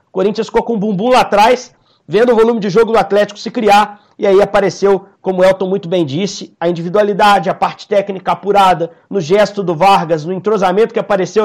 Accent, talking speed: Brazilian, 205 wpm